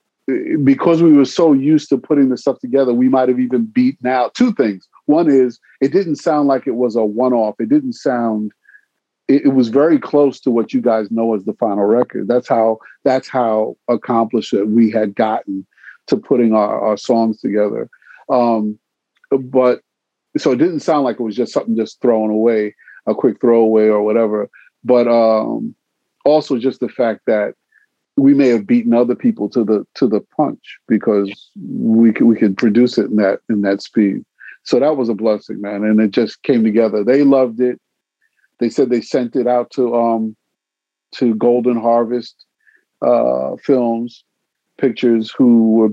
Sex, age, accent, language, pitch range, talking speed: male, 50-69, American, English, 110-130 Hz, 180 wpm